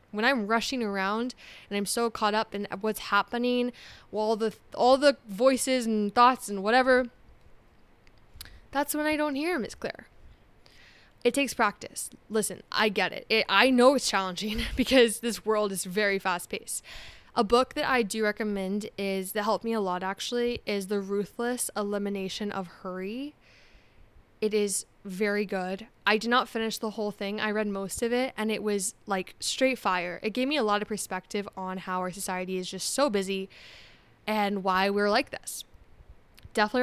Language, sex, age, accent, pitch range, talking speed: English, female, 10-29, American, 190-240 Hz, 175 wpm